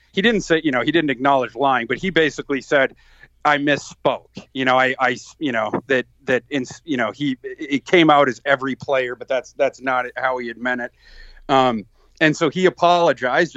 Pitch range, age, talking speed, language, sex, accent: 135-165 Hz, 30-49, 210 wpm, English, male, American